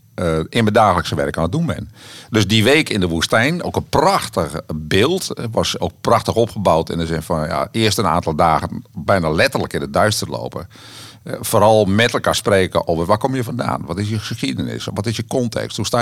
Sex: male